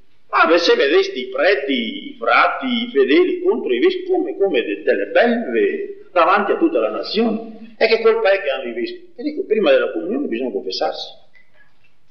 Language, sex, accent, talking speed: Italian, male, native, 185 wpm